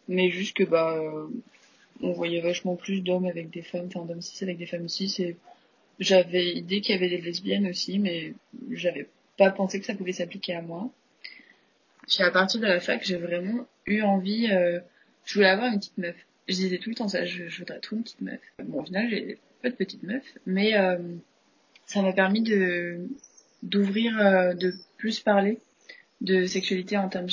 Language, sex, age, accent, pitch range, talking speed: French, female, 20-39, French, 180-205 Hz, 200 wpm